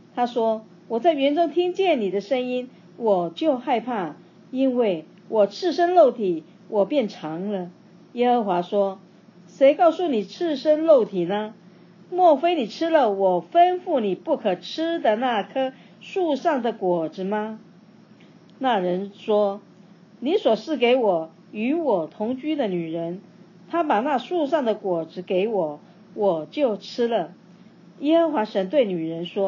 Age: 40-59